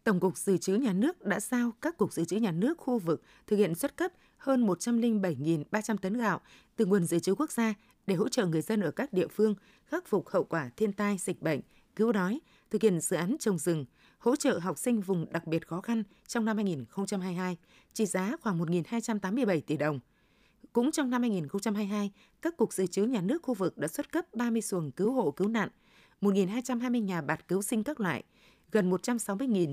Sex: female